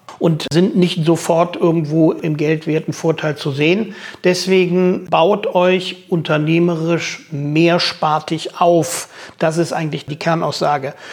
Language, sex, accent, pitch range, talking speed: German, male, German, 155-185 Hz, 115 wpm